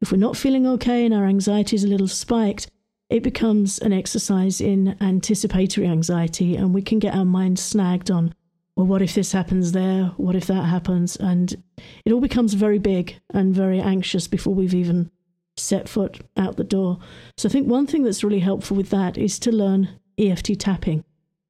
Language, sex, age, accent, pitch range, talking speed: English, female, 50-69, British, 185-220 Hz, 195 wpm